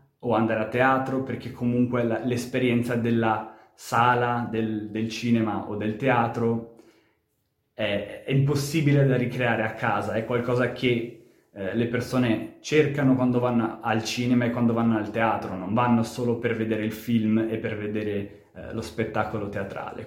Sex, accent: male, native